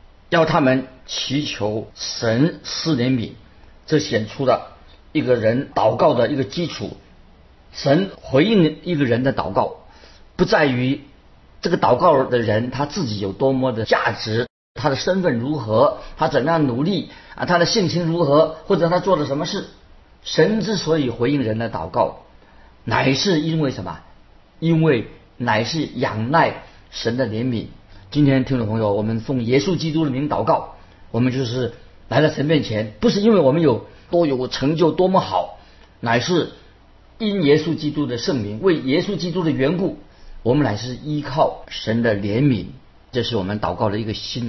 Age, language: 50-69, Chinese